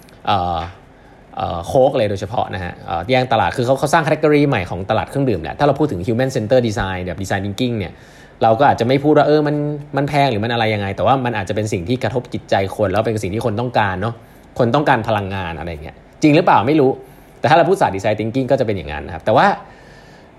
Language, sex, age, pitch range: Thai, male, 20-39, 105-160 Hz